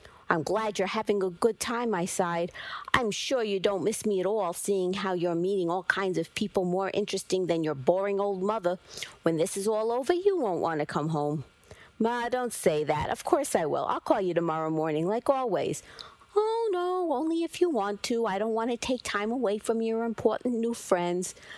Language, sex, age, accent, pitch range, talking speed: English, female, 50-69, American, 180-235 Hz, 215 wpm